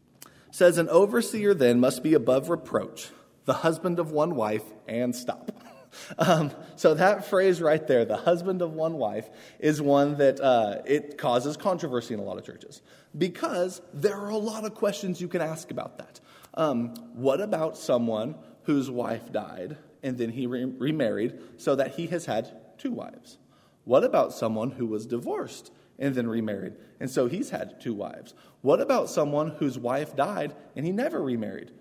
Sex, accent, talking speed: male, American, 175 wpm